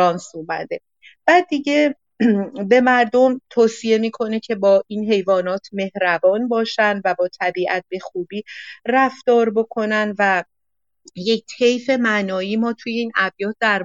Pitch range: 180-225 Hz